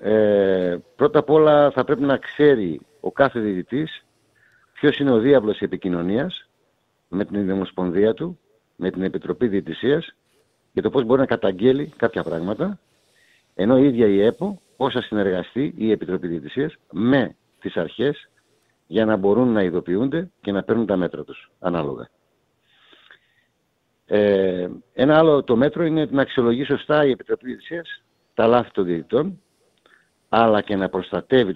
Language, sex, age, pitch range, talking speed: Greek, male, 60-79, 95-140 Hz, 150 wpm